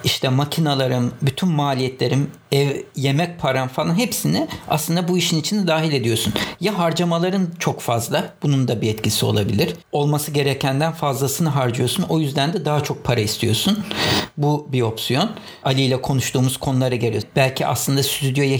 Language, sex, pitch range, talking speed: English, male, 130-175 Hz, 150 wpm